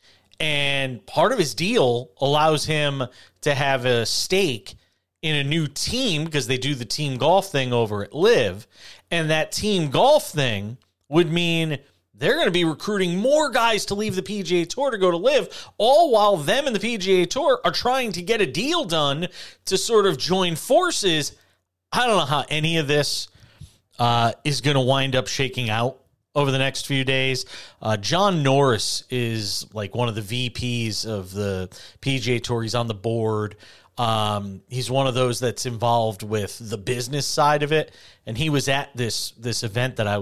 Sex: male